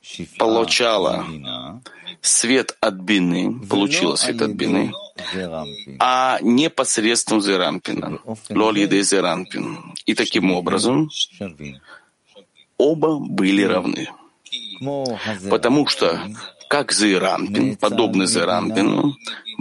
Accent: native